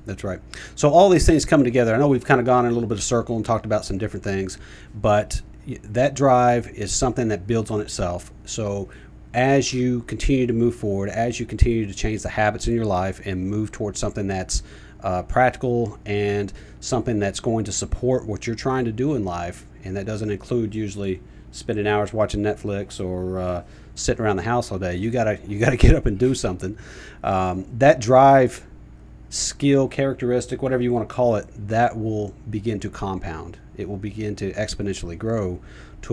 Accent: American